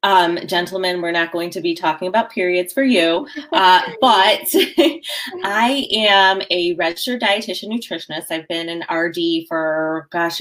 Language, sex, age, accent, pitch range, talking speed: English, female, 20-39, American, 160-200 Hz, 150 wpm